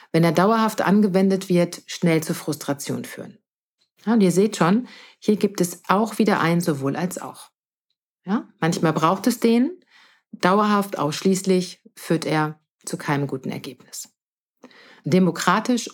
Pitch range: 165-210 Hz